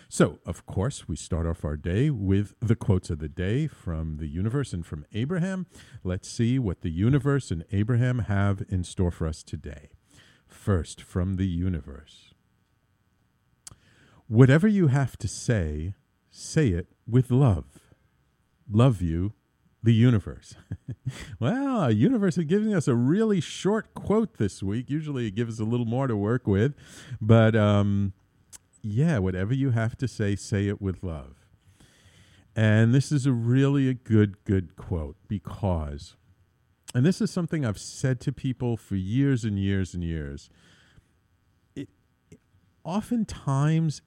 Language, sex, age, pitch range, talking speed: English, male, 50-69, 95-135 Hz, 150 wpm